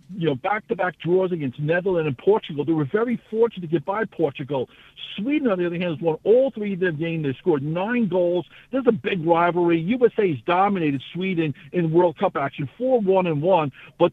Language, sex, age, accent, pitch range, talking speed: English, male, 60-79, American, 155-190 Hz, 205 wpm